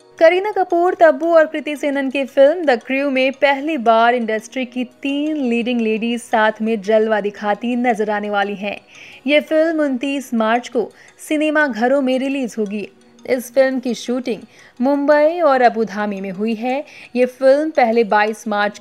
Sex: female